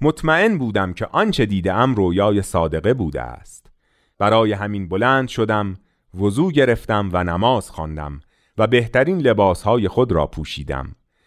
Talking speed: 135 wpm